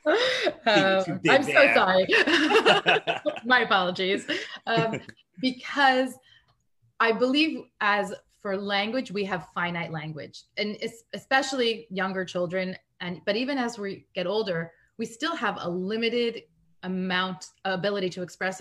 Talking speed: 125 wpm